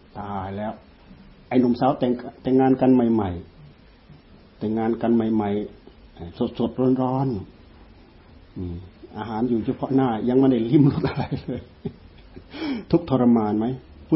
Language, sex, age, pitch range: Thai, male, 60-79, 100-130 Hz